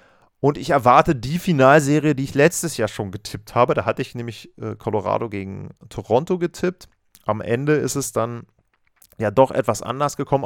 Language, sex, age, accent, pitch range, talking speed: German, male, 30-49, German, 105-135 Hz, 170 wpm